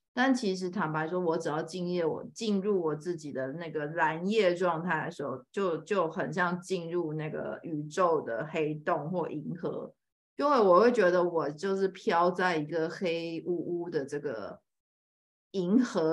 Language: Chinese